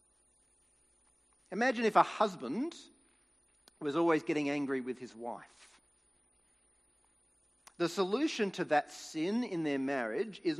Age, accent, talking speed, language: 40-59, Australian, 115 wpm, English